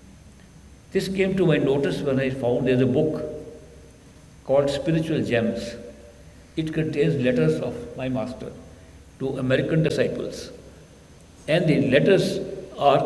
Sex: male